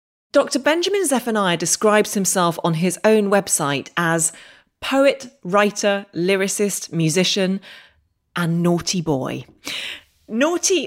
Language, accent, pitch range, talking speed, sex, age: English, British, 160-225 Hz, 100 wpm, female, 30-49